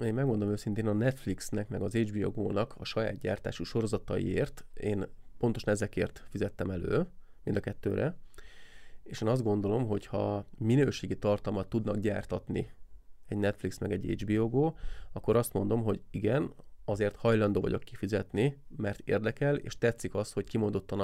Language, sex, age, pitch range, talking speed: Hungarian, male, 20-39, 100-120 Hz, 150 wpm